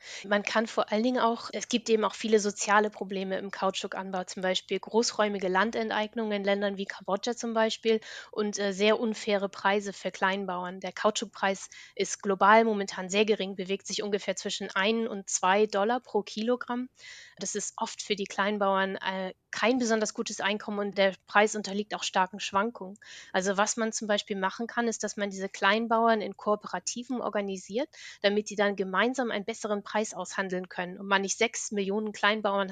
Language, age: German, 30-49